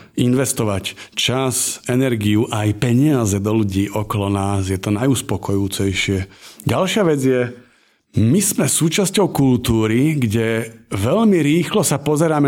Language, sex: Slovak, male